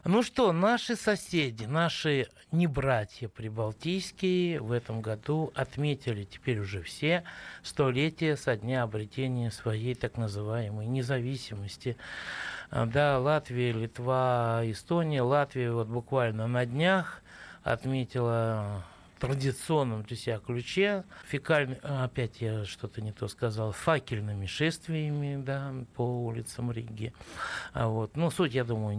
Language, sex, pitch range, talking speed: Russian, male, 110-145 Hz, 110 wpm